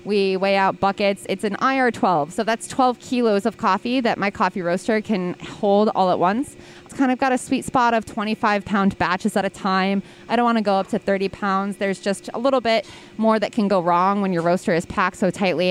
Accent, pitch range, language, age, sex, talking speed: American, 185-215 Hz, English, 20-39, female, 235 wpm